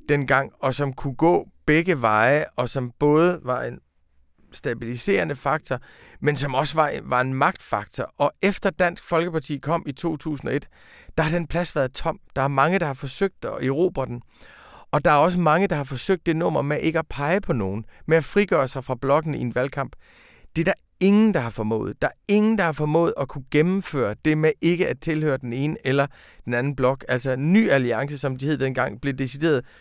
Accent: native